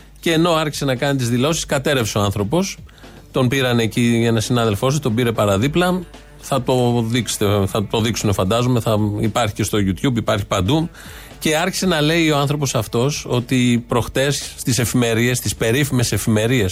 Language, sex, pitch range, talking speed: Greek, male, 115-150 Hz, 165 wpm